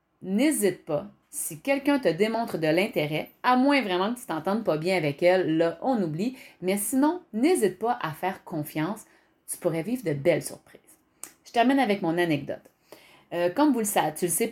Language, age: French, 30-49